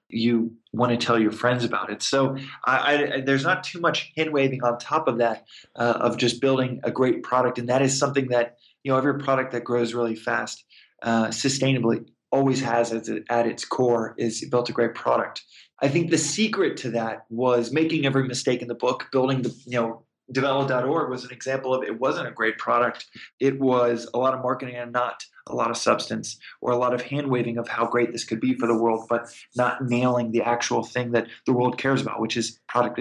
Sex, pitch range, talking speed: male, 115-135 Hz, 220 wpm